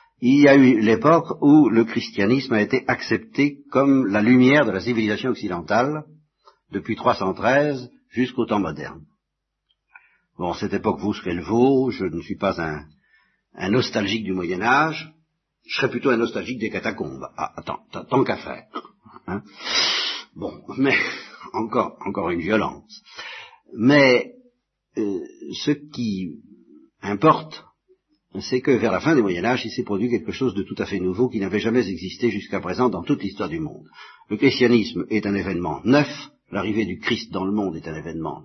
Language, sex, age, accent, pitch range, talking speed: French, male, 60-79, French, 105-145 Hz, 160 wpm